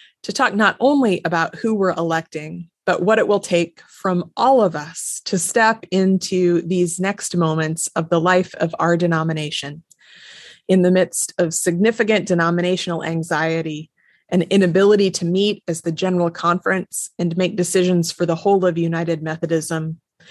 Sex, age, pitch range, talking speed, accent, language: female, 30-49, 165-190 Hz, 155 wpm, American, English